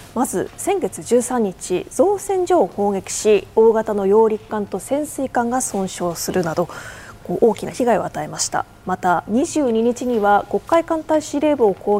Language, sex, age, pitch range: Japanese, female, 20-39, 200-330 Hz